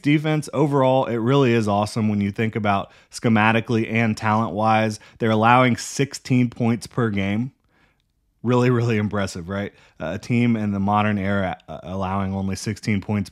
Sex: male